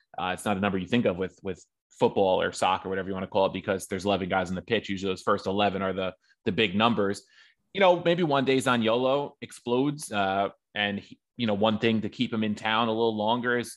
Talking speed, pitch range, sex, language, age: 255 wpm, 100-130 Hz, male, English, 20-39